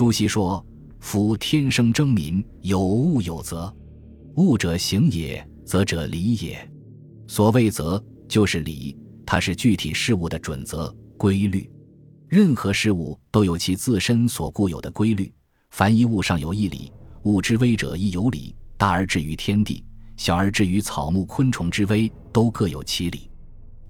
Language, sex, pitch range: Chinese, male, 90-115 Hz